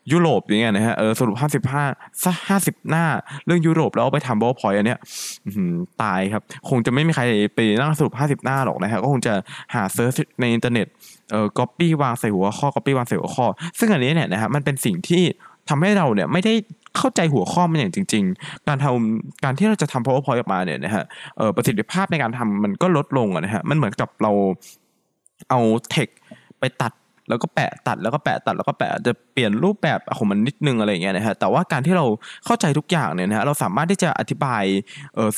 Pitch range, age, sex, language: 115-165 Hz, 20-39, male, Thai